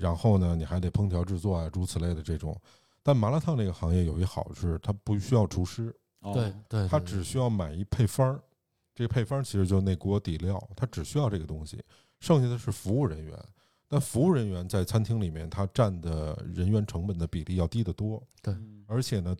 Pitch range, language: 90-115 Hz, Chinese